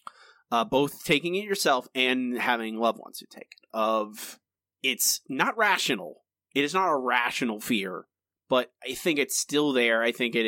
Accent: American